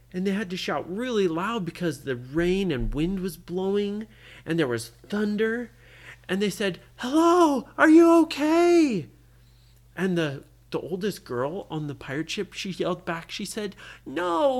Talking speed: 165 wpm